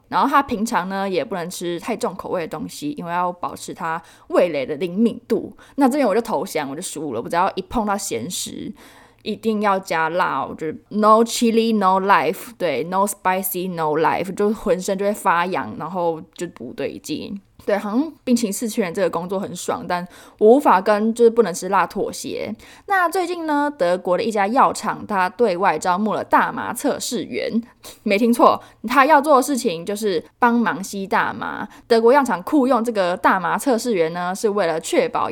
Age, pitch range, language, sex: 20-39, 185-250 Hz, Chinese, female